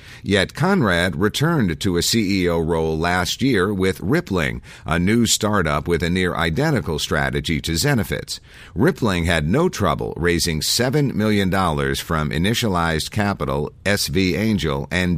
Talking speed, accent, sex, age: 130 wpm, American, male, 50-69